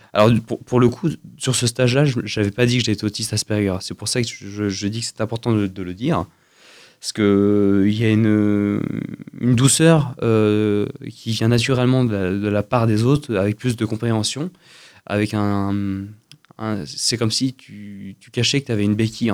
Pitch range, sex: 100-120 Hz, male